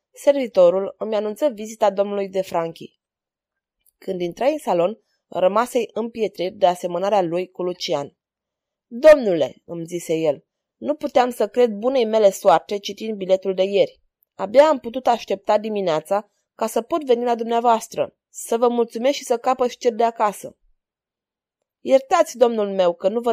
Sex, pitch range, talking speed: female, 195-250 Hz, 150 wpm